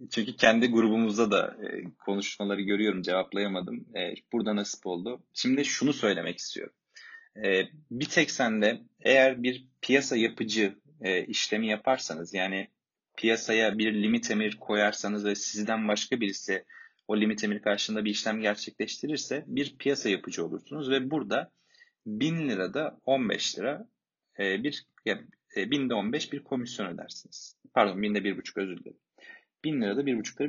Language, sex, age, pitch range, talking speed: Turkish, male, 30-49, 105-145 Hz, 135 wpm